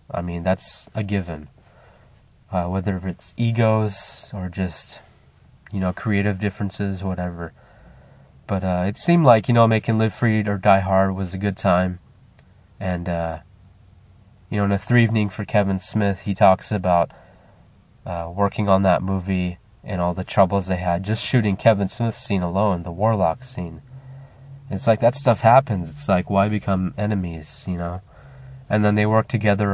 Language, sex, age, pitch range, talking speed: English, male, 20-39, 90-110 Hz, 170 wpm